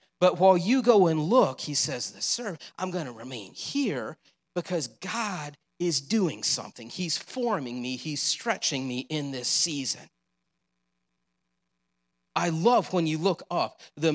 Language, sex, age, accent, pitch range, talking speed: English, male, 40-59, American, 145-210 Hz, 155 wpm